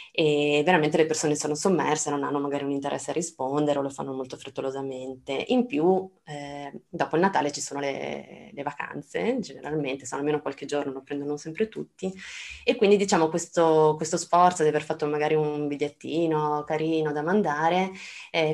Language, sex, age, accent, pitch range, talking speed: Italian, female, 20-39, native, 140-175 Hz, 175 wpm